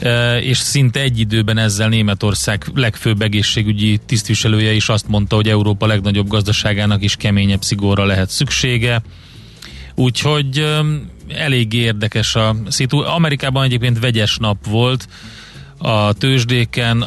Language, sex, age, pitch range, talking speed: Hungarian, male, 30-49, 105-125 Hz, 125 wpm